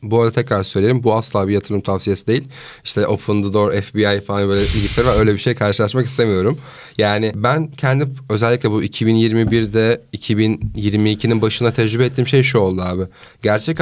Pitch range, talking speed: 105-135 Hz, 160 wpm